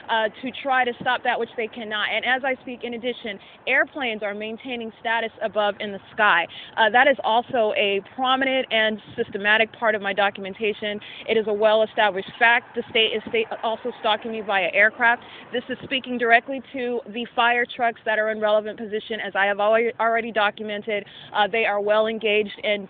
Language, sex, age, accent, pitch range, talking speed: English, female, 30-49, American, 215-250 Hz, 190 wpm